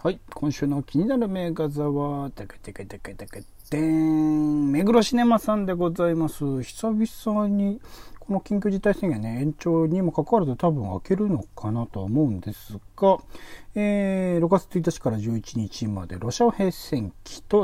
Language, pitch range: Japanese, 110-180 Hz